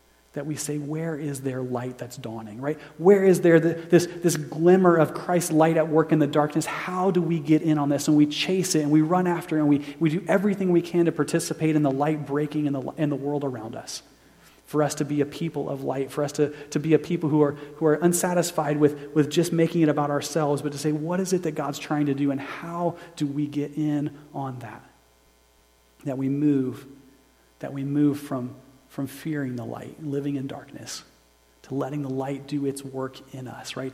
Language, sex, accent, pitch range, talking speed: English, male, American, 135-155 Hz, 230 wpm